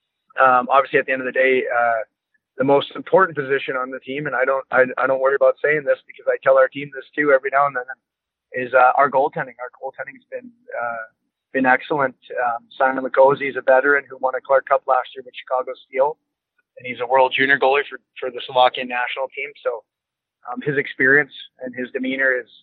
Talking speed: 215 wpm